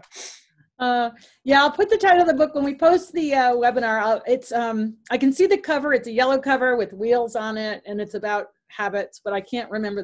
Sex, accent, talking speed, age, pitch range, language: female, American, 240 wpm, 40-59, 210-270 Hz, English